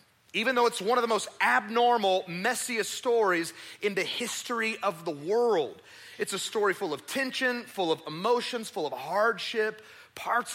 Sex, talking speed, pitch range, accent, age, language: male, 165 wpm, 165-215 Hz, American, 30-49, English